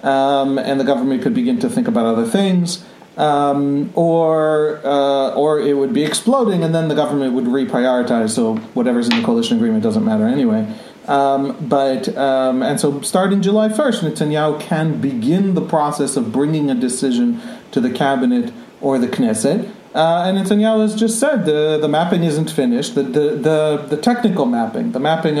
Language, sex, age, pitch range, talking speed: English, male, 40-59, 140-220 Hz, 180 wpm